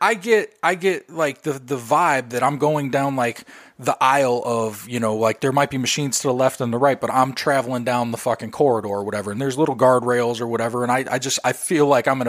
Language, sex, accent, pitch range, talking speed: English, male, American, 120-150 Hz, 260 wpm